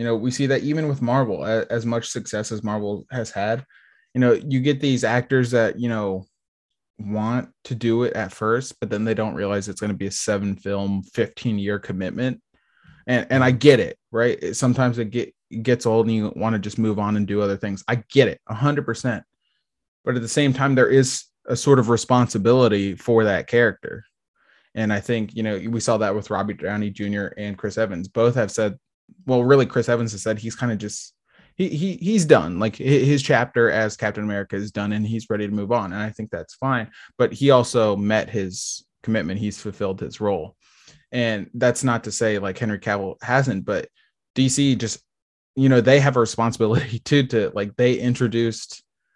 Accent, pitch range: American, 105-125 Hz